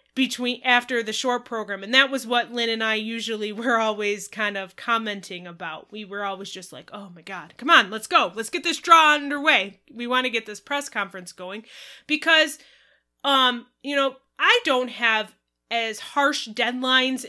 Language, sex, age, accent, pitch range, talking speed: English, female, 20-39, American, 220-270 Hz, 185 wpm